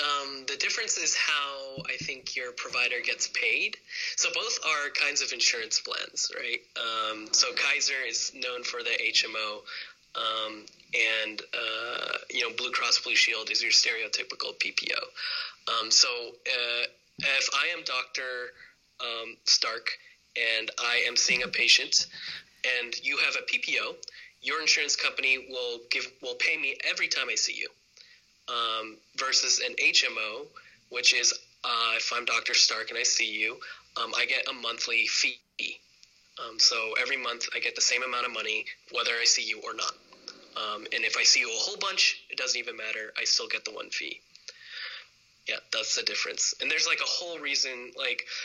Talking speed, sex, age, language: 175 wpm, male, 20-39, English